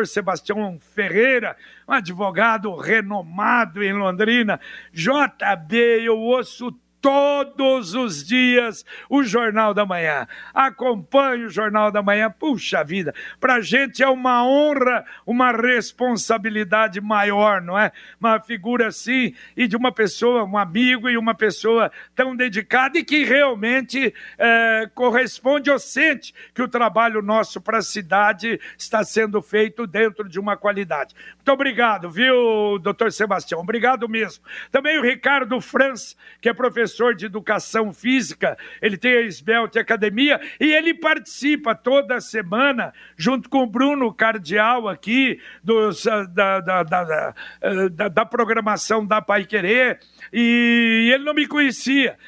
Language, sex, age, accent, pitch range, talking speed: Portuguese, male, 60-79, Brazilian, 215-255 Hz, 130 wpm